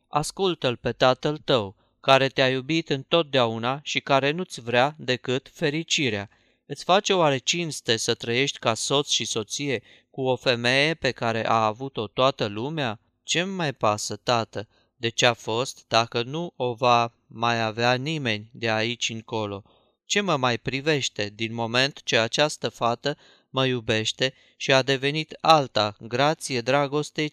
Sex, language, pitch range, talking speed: male, Romanian, 115-145 Hz, 150 wpm